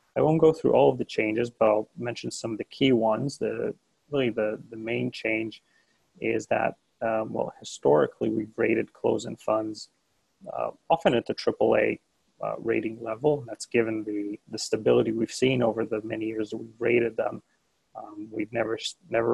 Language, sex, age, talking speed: English, male, 30-49, 185 wpm